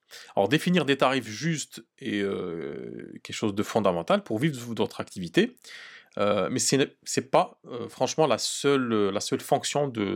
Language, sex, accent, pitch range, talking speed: French, male, French, 115-170 Hz, 170 wpm